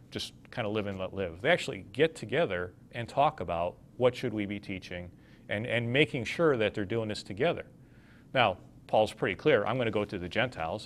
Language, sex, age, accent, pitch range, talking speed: English, male, 40-59, American, 95-115 Hz, 215 wpm